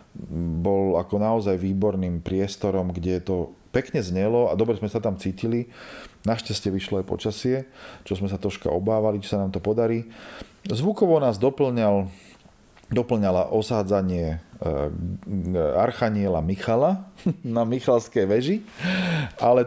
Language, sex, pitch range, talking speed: Slovak, male, 95-115 Hz, 130 wpm